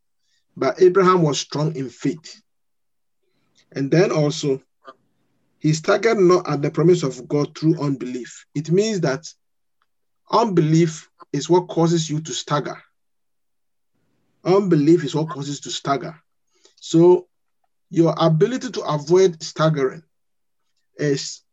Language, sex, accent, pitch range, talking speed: English, male, Nigerian, 150-180 Hz, 120 wpm